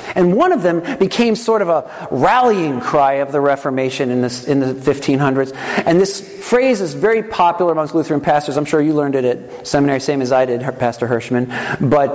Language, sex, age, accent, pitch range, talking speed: English, male, 50-69, American, 160-235 Hz, 200 wpm